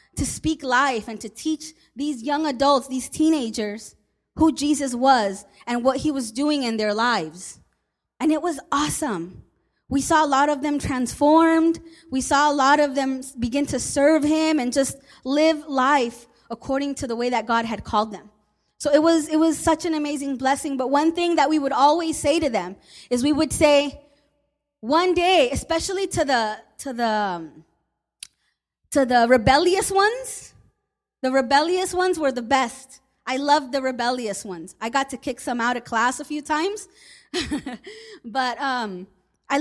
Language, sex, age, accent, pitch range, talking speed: English, female, 20-39, American, 245-310 Hz, 175 wpm